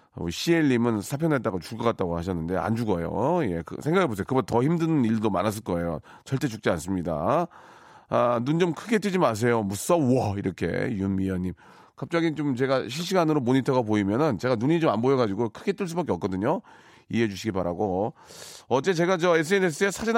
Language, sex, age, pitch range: Korean, male, 40-59, 110-155 Hz